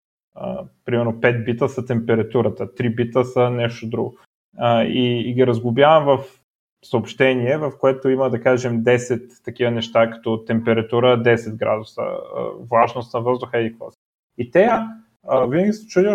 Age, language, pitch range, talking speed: 20-39, Bulgarian, 120-155 Hz, 155 wpm